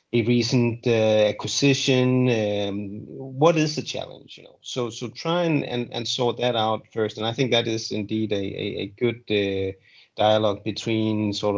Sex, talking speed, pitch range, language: male, 180 wpm, 105-120 Hz, English